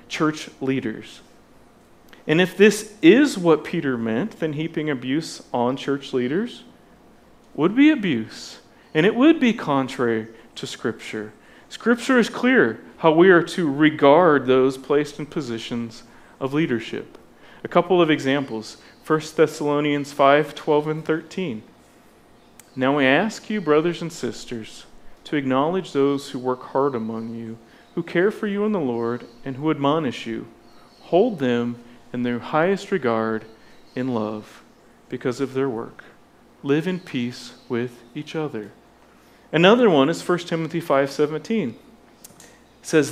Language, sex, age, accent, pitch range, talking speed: English, male, 40-59, American, 120-165 Hz, 140 wpm